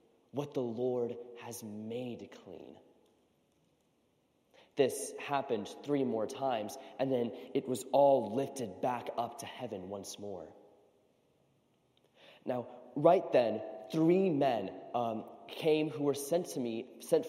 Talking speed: 120 wpm